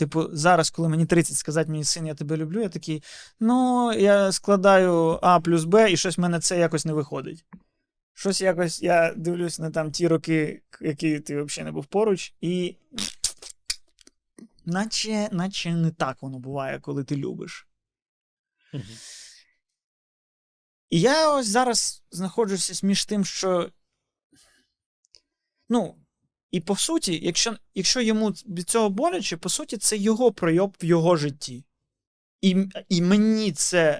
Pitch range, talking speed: 160-200 Hz, 145 wpm